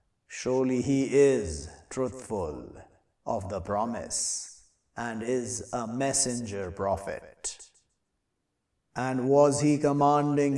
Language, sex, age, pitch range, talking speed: English, male, 50-69, 120-140 Hz, 90 wpm